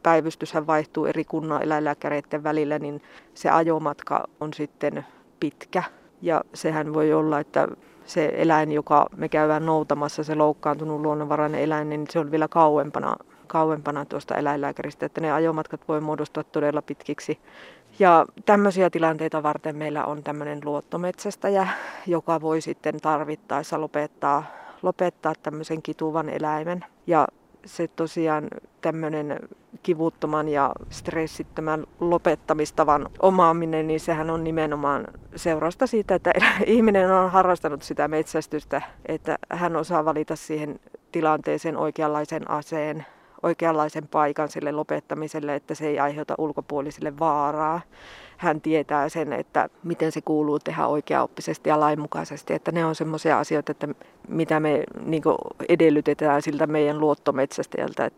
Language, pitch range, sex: Finnish, 150-160 Hz, female